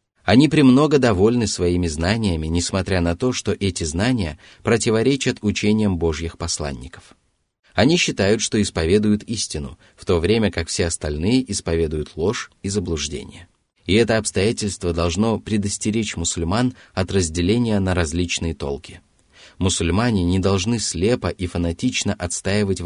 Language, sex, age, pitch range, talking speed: Russian, male, 30-49, 85-105 Hz, 125 wpm